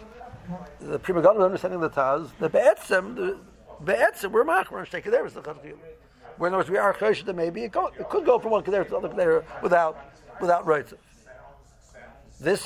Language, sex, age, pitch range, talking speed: English, male, 60-79, 145-205 Hz, 185 wpm